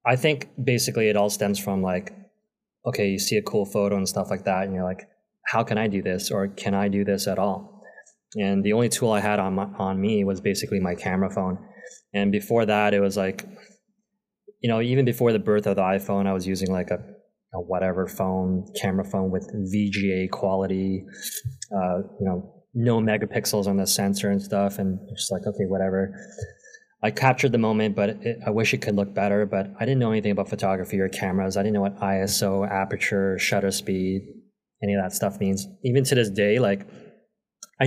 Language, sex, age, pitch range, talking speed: English, male, 20-39, 95-115 Hz, 210 wpm